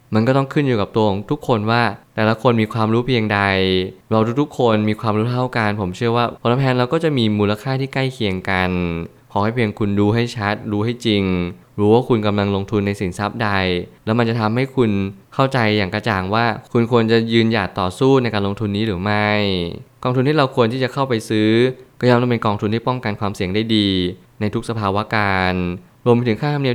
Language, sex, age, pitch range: Thai, male, 20-39, 100-120 Hz